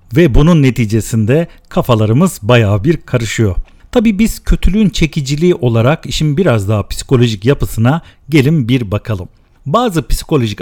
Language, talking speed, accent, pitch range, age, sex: Turkish, 125 wpm, native, 110-155 Hz, 50-69, male